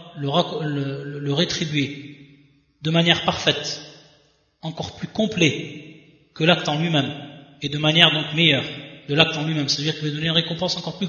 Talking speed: 170 wpm